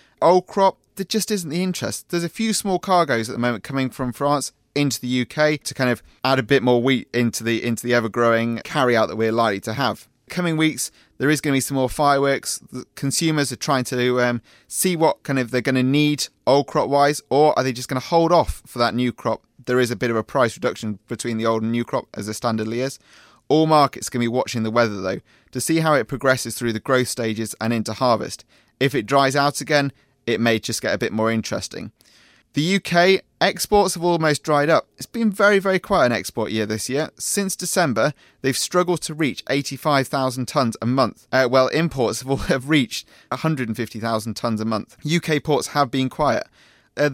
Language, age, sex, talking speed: English, 30-49, male, 220 wpm